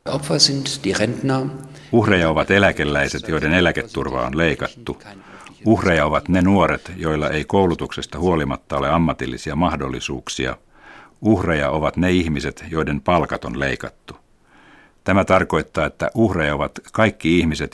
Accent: native